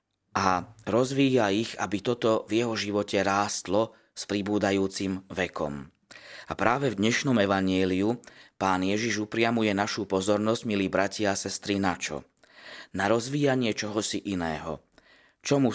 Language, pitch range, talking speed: Slovak, 95-110 Hz, 125 wpm